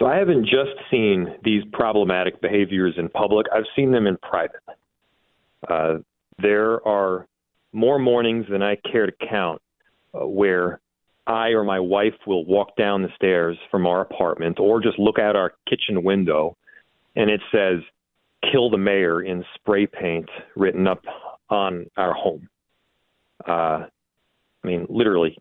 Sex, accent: male, American